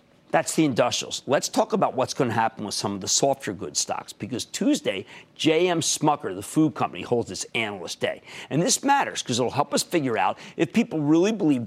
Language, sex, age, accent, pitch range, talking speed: English, male, 50-69, American, 120-180 Hz, 215 wpm